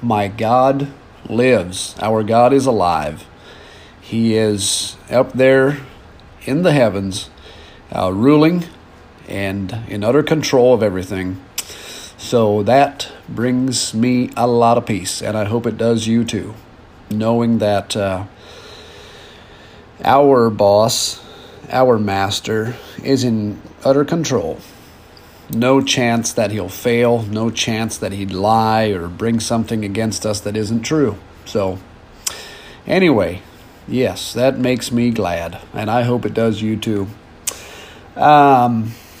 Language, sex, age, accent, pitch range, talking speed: English, male, 40-59, American, 100-130 Hz, 125 wpm